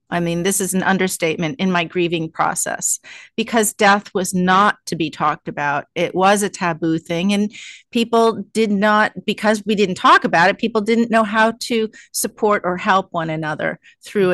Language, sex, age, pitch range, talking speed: English, female, 40-59, 180-215 Hz, 185 wpm